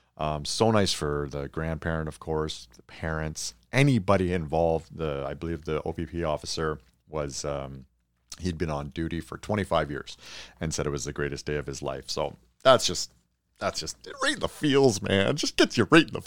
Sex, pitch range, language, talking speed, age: male, 75-100 Hz, English, 195 wpm, 40-59